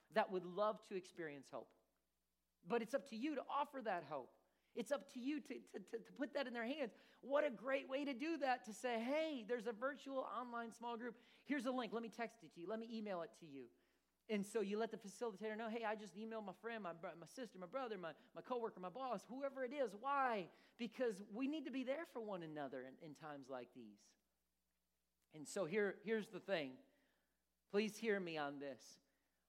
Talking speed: 225 wpm